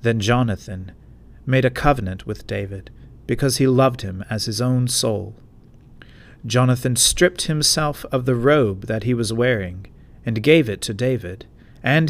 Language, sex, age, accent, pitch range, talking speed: English, male, 40-59, American, 115-145 Hz, 155 wpm